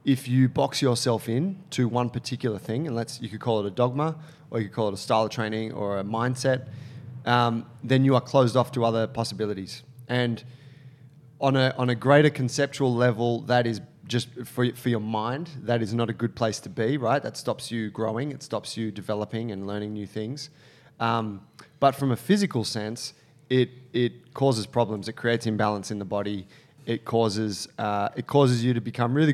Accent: Australian